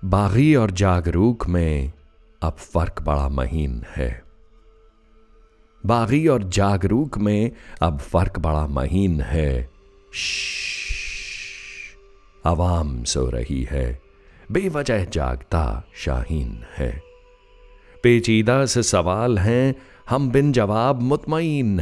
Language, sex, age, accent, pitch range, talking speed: Hindi, male, 60-79, native, 75-115 Hz, 95 wpm